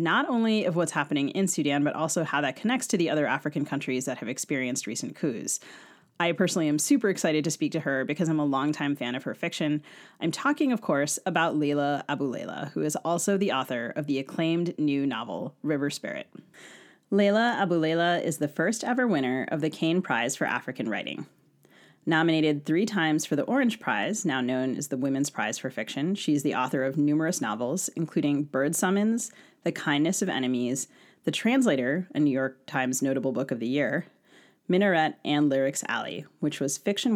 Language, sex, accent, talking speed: English, female, American, 190 wpm